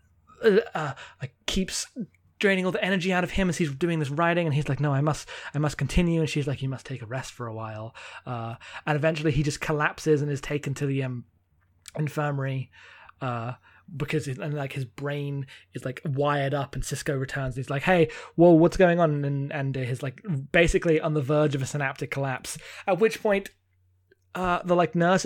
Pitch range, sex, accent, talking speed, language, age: 135-180 Hz, male, British, 220 wpm, English, 20-39